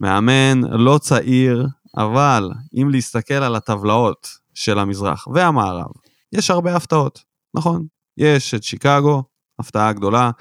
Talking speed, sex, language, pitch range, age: 115 wpm, male, Hebrew, 110-155 Hz, 20-39